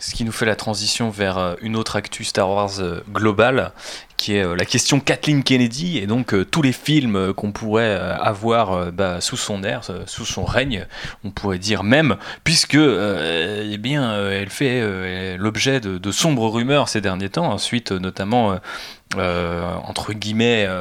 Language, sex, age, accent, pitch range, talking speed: French, male, 20-39, French, 100-125 Hz, 165 wpm